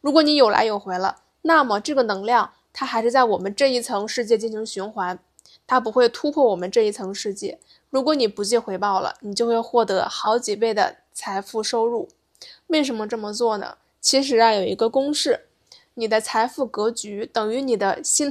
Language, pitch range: Chinese, 215-270 Hz